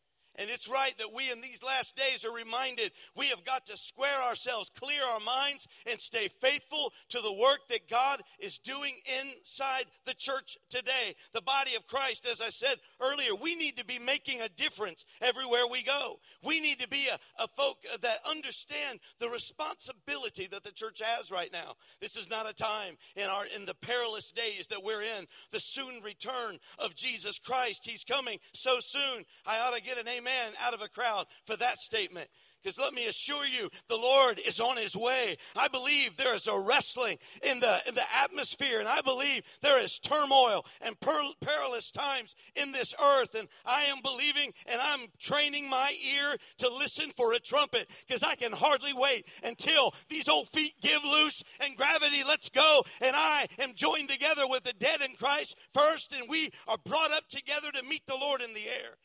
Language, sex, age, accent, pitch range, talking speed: English, male, 50-69, American, 245-290 Hz, 195 wpm